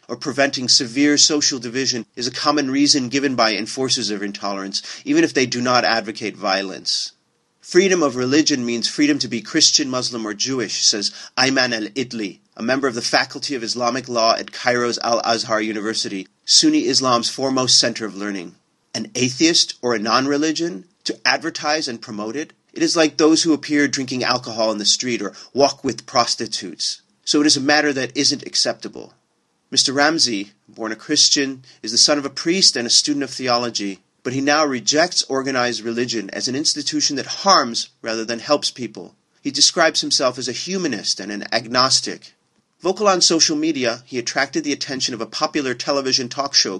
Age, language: 40-59, English